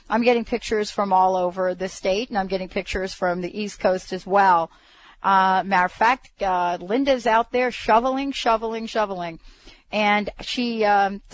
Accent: American